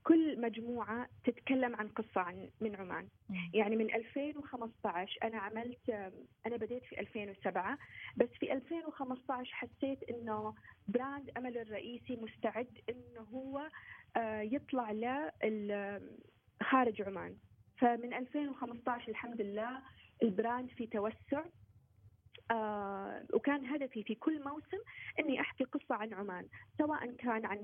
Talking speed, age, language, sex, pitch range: 115 wpm, 30-49, Arabic, female, 205-255 Hz